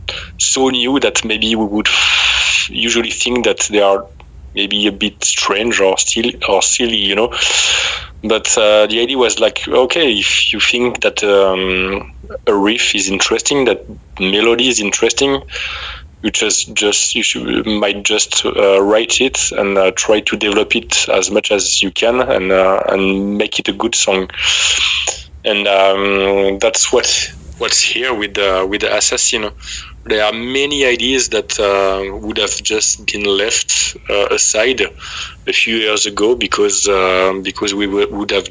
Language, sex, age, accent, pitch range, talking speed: English, male, 20-39, French, 95-115 Hz, 165 wpm